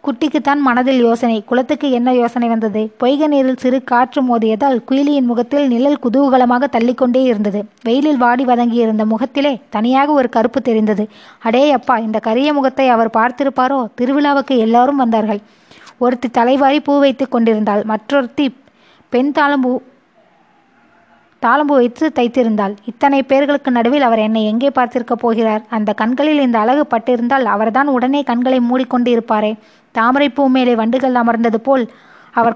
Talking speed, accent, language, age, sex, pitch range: 125 wpm, native, Tamil, 20-39, female, 230-270 Hz